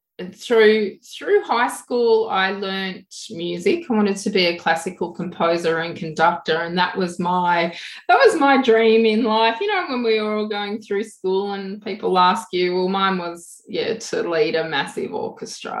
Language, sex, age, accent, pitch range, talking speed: English, female, 20-39, Australian, 170-215 Hz, 180 wpm